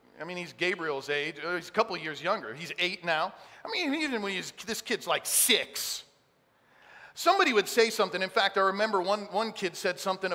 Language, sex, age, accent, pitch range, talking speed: English, male, 40-59, American, 180-255 Hz, 205 wpm